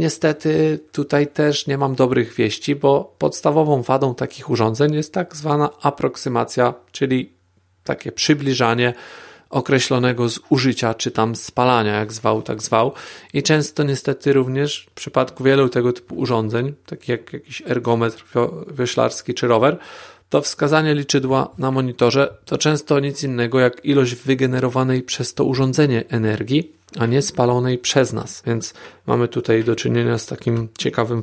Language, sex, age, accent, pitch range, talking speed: Polish, male, 40-59, native, 115-140 Hz, 140 wpm